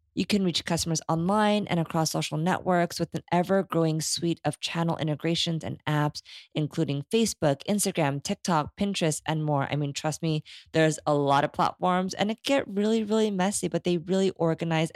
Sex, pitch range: female, 150-185 Hz